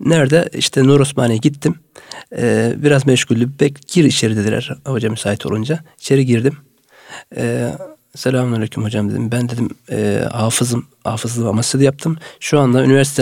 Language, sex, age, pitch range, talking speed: Turkish, male, 40-59, 120-150 Hz, 140 wpm